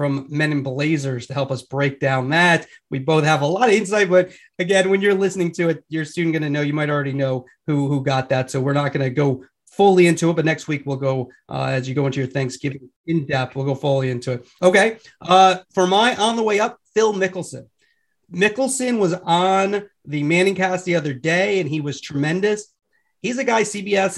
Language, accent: English, American